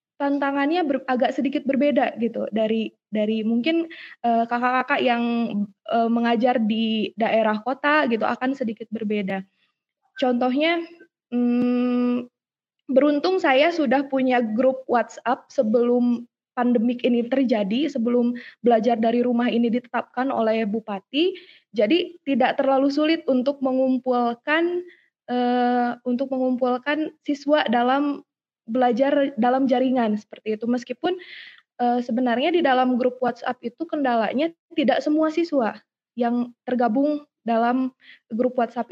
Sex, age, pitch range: female, 20-39, 235-285 Hz